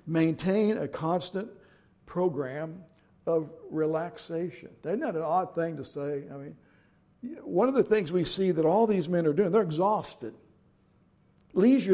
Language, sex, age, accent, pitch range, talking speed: English, male, 60-79, American, 140-180 Hz, 150 wpm